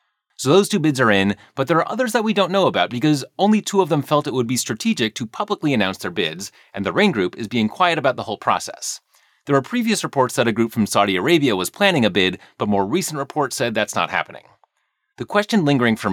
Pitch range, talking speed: 105-155 Hz, 250 wpm